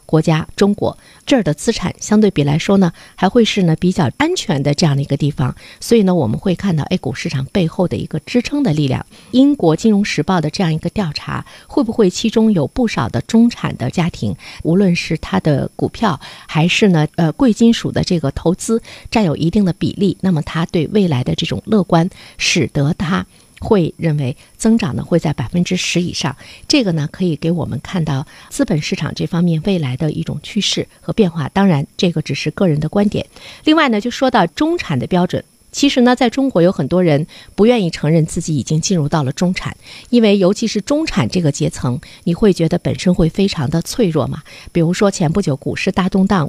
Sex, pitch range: female, 155-205 Hz